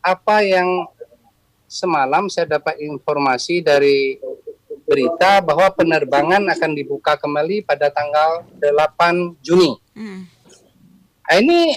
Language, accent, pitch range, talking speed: Indonesian, native, 165-225 Hz, 90 wpm